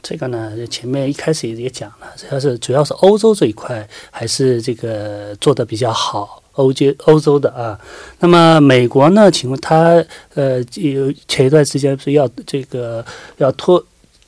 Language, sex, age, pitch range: Korean, male, 30-49, 125-160 Hz